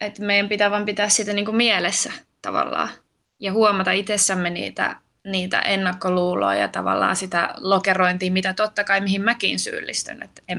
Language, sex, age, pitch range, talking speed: Finnish, female, 20-39, 185-215 Hz, 145 wpm